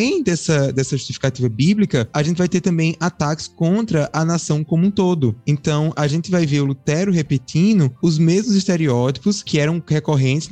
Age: 20-39